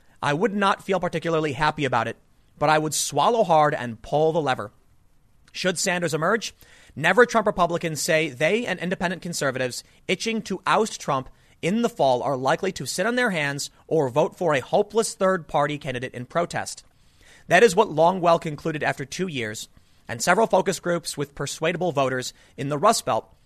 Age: 30-49